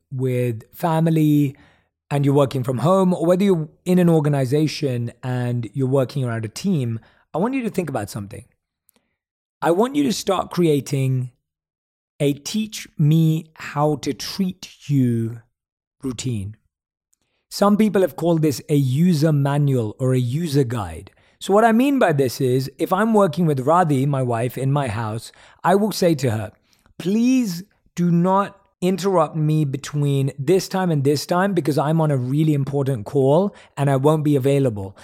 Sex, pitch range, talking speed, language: male, 130-185 Hz, 160 wpm, English